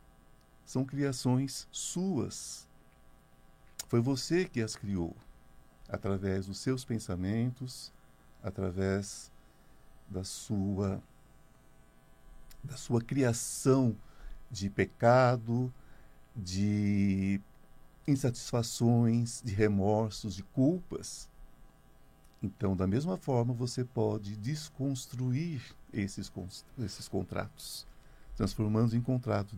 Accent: Brazilian